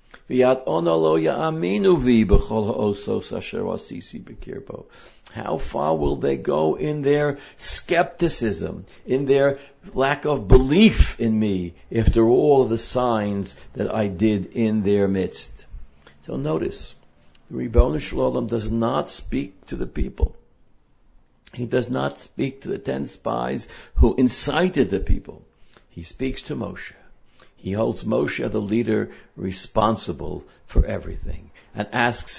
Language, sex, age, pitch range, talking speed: English, male, 60-79, 95-125 Hz, 115 wpm